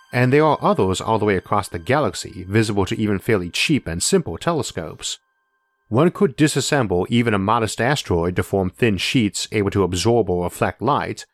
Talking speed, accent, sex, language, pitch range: 185 wpm, American, male, English, 95-130 Hz